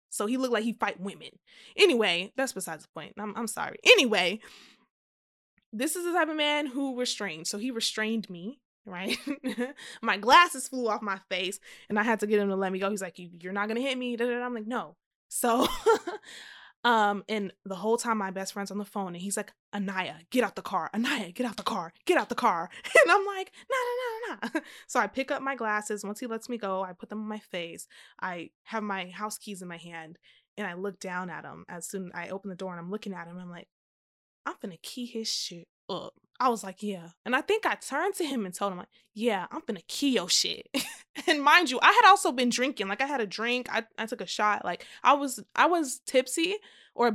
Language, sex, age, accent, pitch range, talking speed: English, female, 20-39, American, 195-280 Hz, 240 wpm